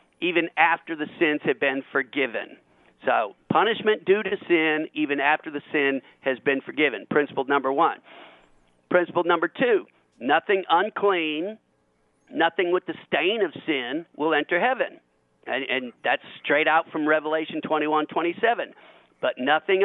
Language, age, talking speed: English, 50-69, 140 wpm